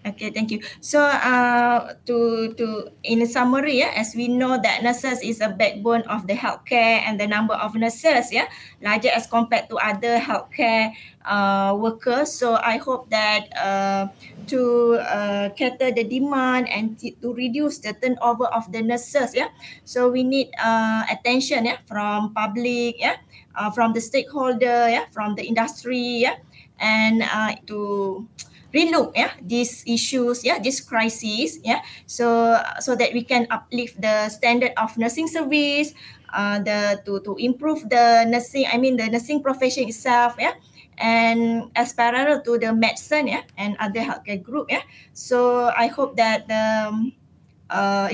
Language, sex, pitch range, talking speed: English, female, 220-250 Hz, 160 wpm